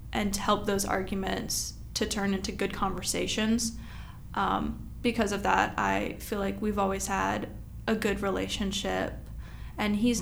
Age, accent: 20-39, American